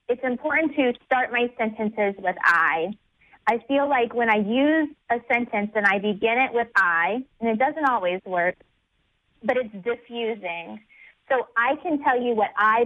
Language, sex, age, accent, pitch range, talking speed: English, female, 20-39, American, 200-245 Hz, 175 wpm